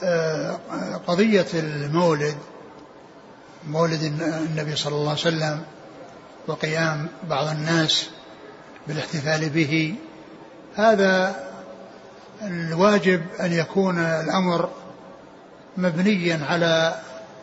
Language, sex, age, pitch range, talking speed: Arabic, male, 60-79, 165-185 Hz, 70 wpm